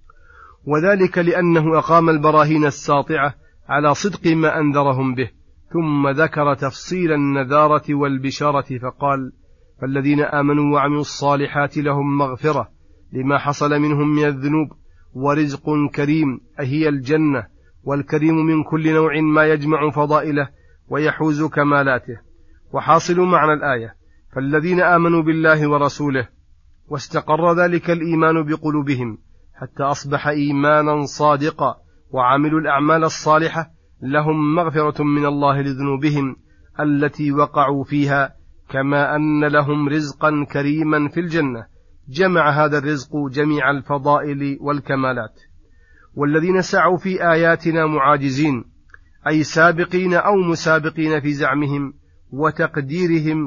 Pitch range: 140-155 Hz